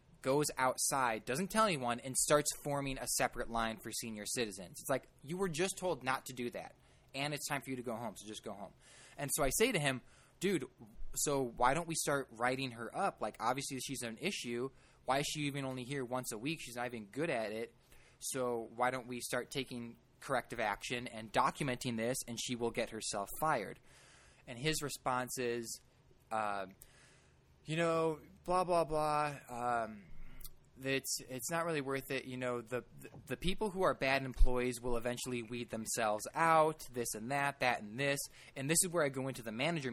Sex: male